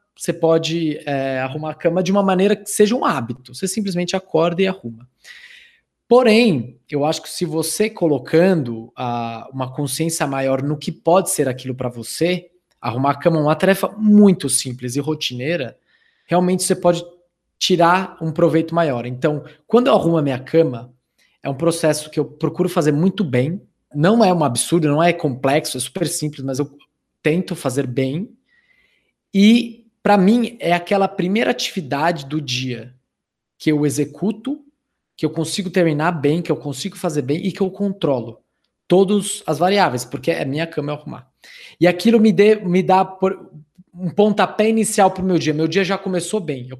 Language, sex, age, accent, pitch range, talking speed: Portuguese, male, 20-39, Brazilian, 145-190 Hz, 175 wpm